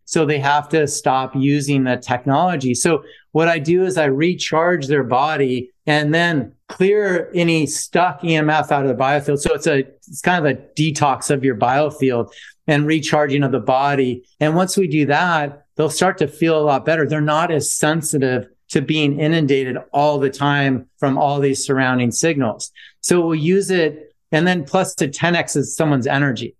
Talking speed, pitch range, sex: 185 wpm, 135-160 Hz, male